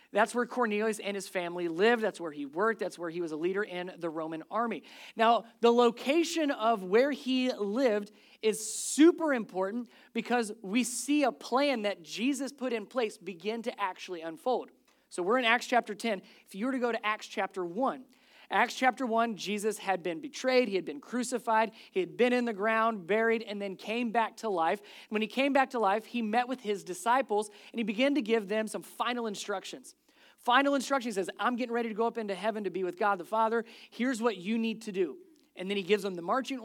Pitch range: 200-250 Hz